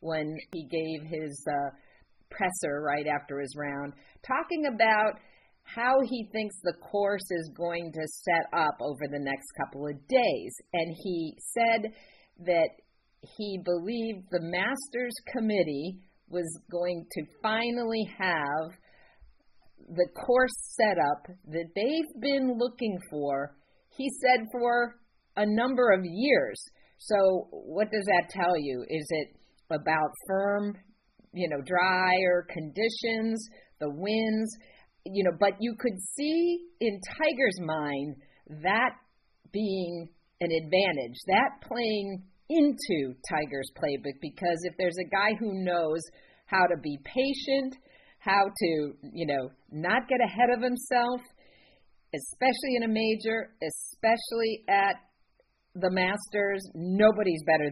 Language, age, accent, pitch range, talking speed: English, 50-69, American, 160-230 Hz, 125 wpm